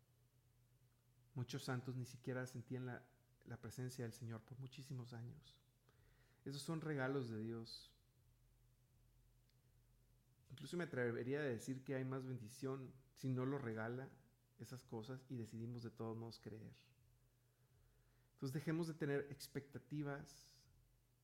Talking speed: 125 wpm